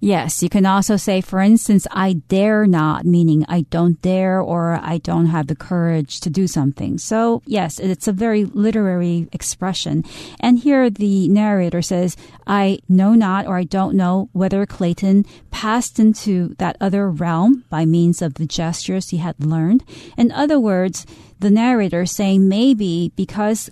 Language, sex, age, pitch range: Chinese, female, 40-59, 170-210 Hz